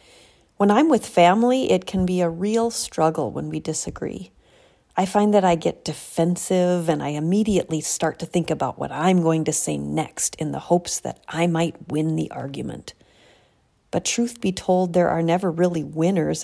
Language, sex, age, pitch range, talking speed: English, female, 40-59, 155-195 Hz, 185 wpm